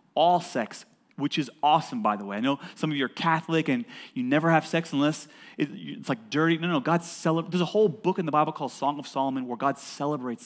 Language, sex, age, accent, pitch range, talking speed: English, male, 30-49, American, 155-215 Hz, 240 wpm